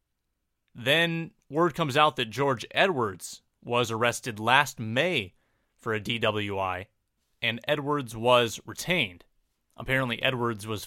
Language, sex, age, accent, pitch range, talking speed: English, male, 30-49, American, 115-150 Hz, 115 wpm